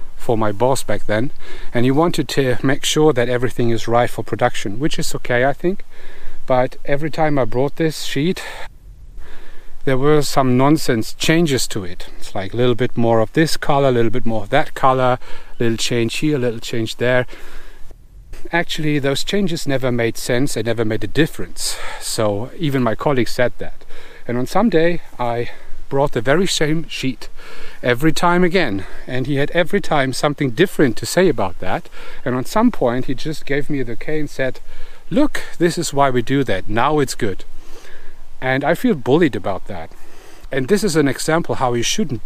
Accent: German